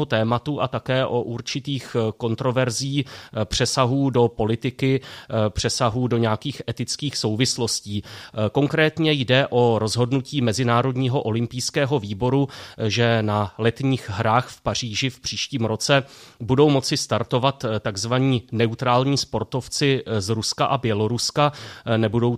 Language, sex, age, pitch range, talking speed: Czech, male, 30-49, 110-130 Hz, 105 wpm